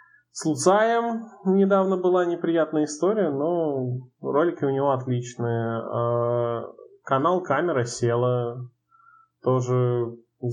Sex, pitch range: male, 115-150 Hz